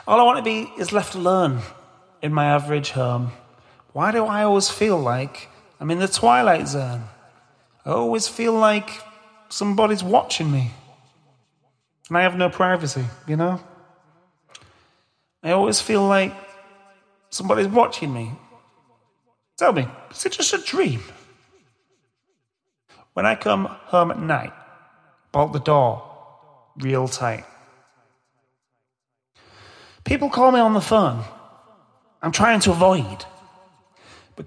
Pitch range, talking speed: 135-210 Hz, 125 wpm